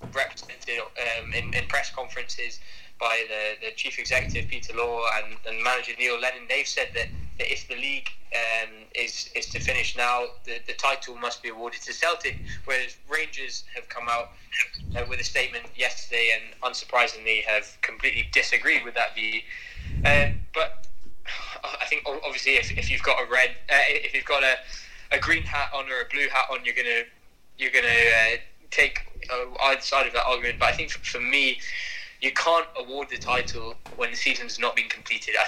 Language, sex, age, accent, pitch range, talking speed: English, male, 10-29, British, 110-135 Hz, 190 wpm